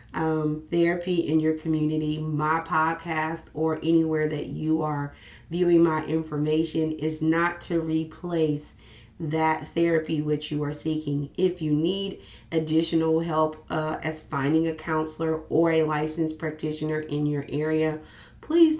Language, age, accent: English, 30-49, American